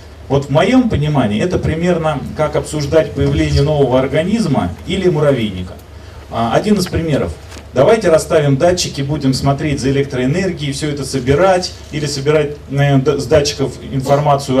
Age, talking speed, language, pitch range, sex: 30-49, 125 wpm, Russian, 115-160 Hz, male